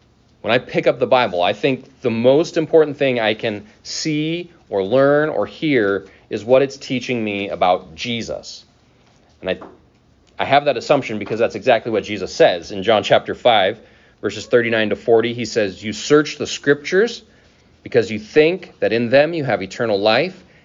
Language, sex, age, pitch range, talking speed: English, male, 30-49, 115-150 Hz, 180 wpm